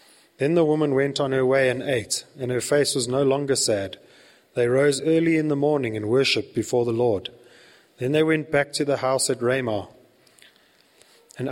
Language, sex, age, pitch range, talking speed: English, male, 30-49, 120-145 Hz, 195 wpm